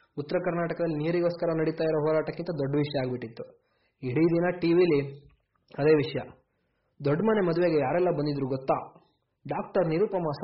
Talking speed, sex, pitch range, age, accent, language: 125 wpm, male, 145-175 Hz, 20-39, native, Kannada